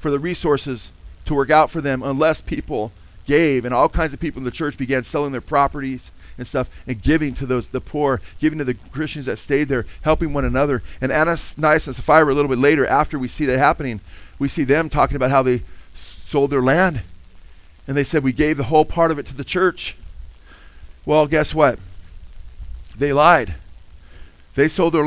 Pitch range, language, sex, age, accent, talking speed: 95-150 Hz, English, male, 40-59, American, 200 wpm